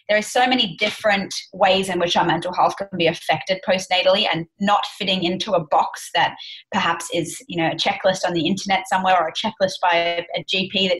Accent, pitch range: Australian, 175-210 Hz